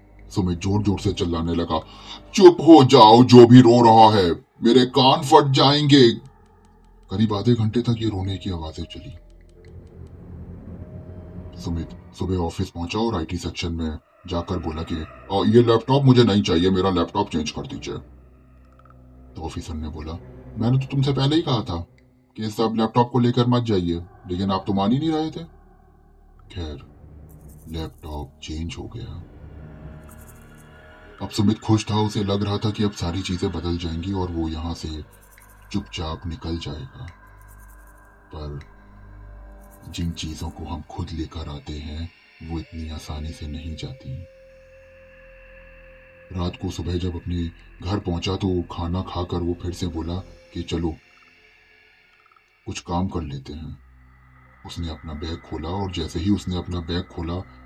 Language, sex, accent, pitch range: Hindi, male, native, 80-105 Hz